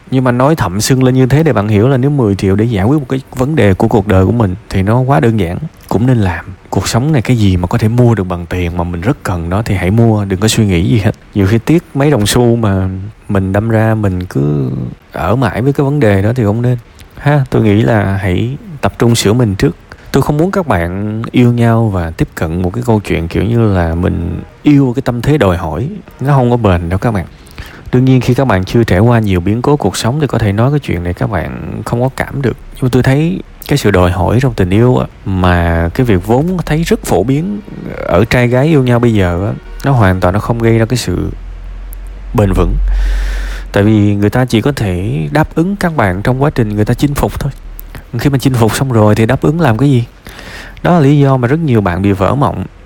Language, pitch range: Vietnamese, 95-130 Hz